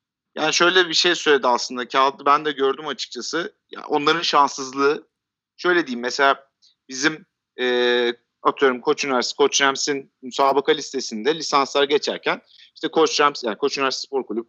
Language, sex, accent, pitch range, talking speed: Turkish, male, native, 130-160 Hz, 145 wpm